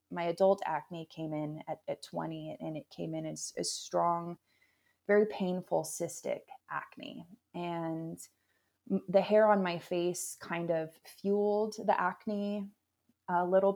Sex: female